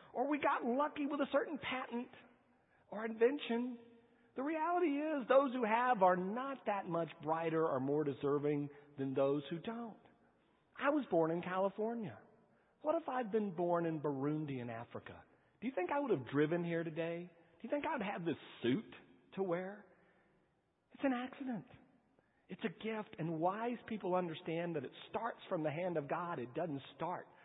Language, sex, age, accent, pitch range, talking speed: English, male, 40-59, American, 150-240 Hz, 180 wpm